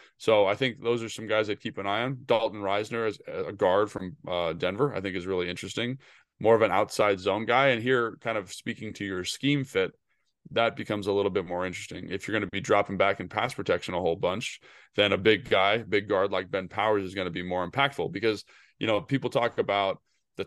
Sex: male